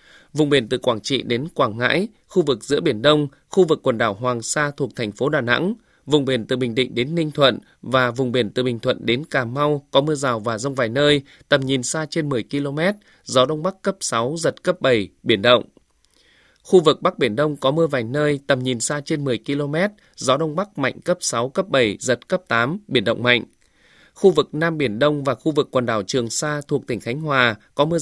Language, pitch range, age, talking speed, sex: Vietnamese, 125-155 Hz, 20-39, 240 wpm, male